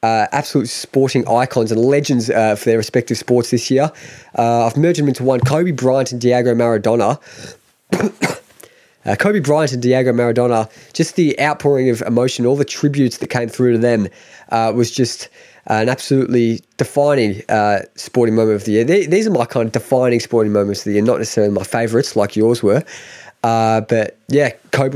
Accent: Australian